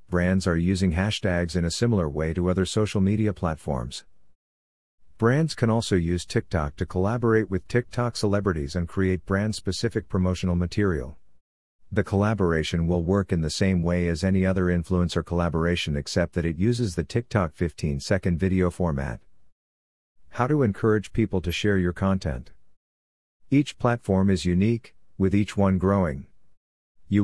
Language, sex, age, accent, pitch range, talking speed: English, male, 50-69, American, 85-100 Hz, 150 wpm